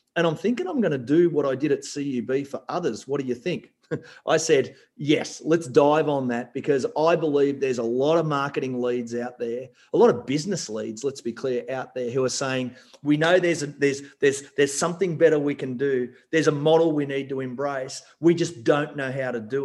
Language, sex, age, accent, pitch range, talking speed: English, male, 40-59, Australian, 130-155 Hz, 230 wpm